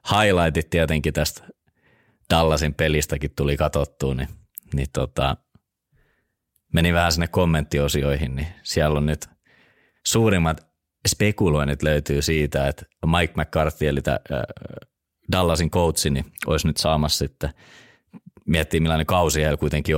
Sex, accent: male, native